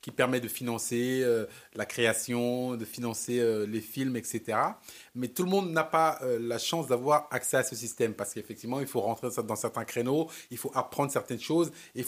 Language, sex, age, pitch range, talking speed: French, male, 30-49, 125-155 Hz, 205 wpm